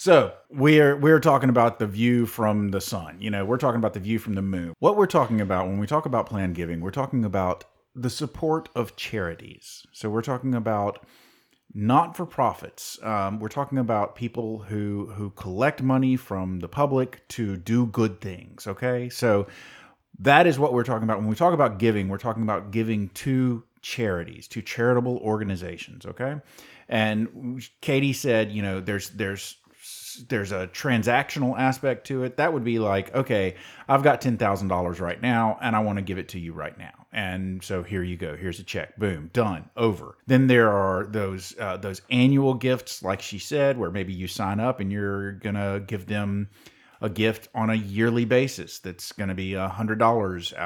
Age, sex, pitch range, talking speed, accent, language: 30-49, male, 100-125 Hz, 190 wpm, American, English